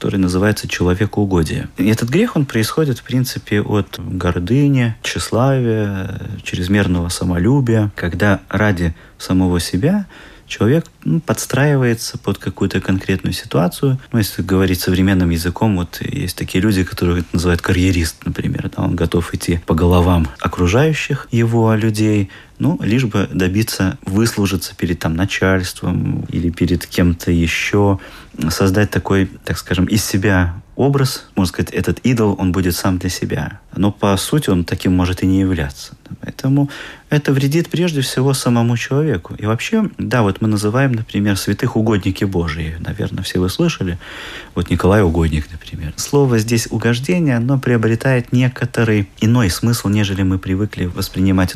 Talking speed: 145 wpm